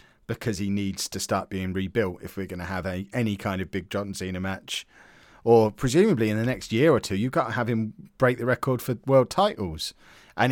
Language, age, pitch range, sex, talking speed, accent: English, 40-59, 95-130 Hz, male, 220 wpm, British